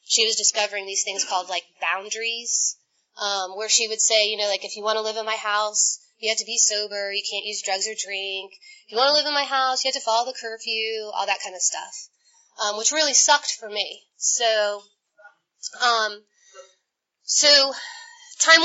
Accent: American